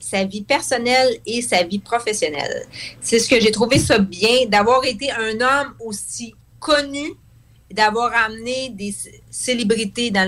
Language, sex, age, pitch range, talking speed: English, female, 30-49, 190-280 Hz, 150 wpm